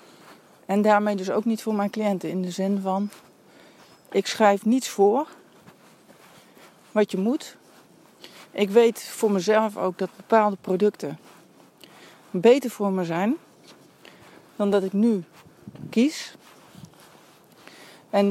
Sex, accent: female, Dutch